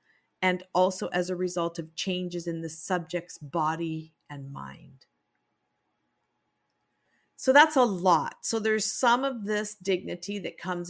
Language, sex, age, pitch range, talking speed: English, female, 50-69, 165-195 Hz, 140 wpm